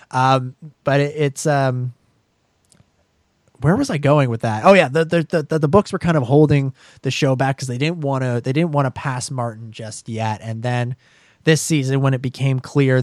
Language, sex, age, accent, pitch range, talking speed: English, male, 20-39, American, 120-140 Hz, 210 wpm